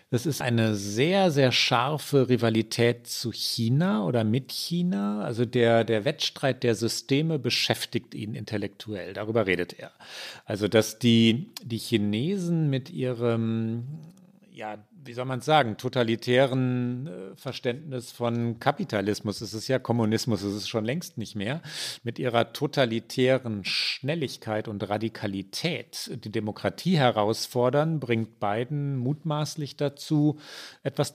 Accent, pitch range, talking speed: German, 115-145 Hz, 125 wpm